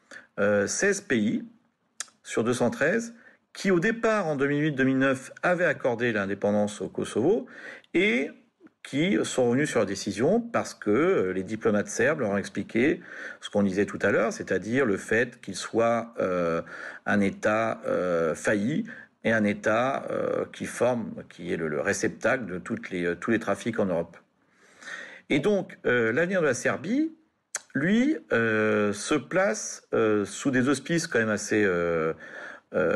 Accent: French